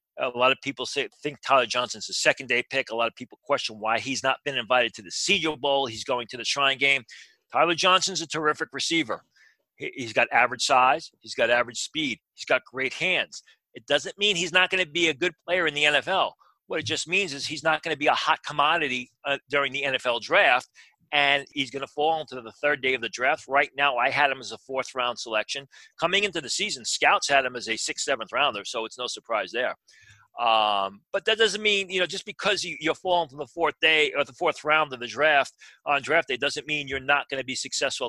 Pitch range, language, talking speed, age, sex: 130-160 Hz, English, 240 wpm, 40-59, male